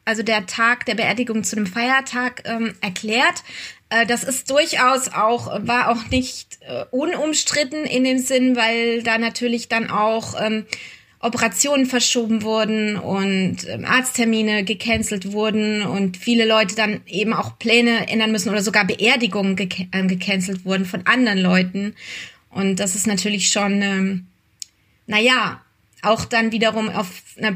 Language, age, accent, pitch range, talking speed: German, 20-39, German, 205-245 Hz, 150 wpm